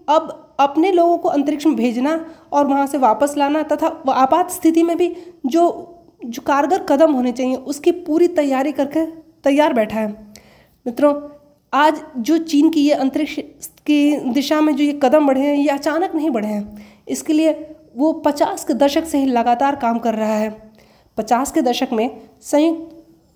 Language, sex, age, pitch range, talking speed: Hindi, female, 20-39, 260-315 Hz, 175 wpm